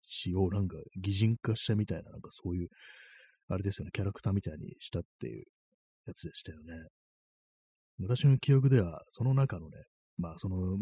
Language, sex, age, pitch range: Japanese, male, 30-49, 85-120 Hz